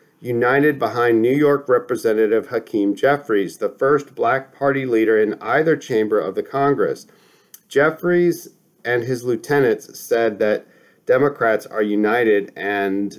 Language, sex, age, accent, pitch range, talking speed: English, male, 40-59, American, 120-170 Hz, 125 wpm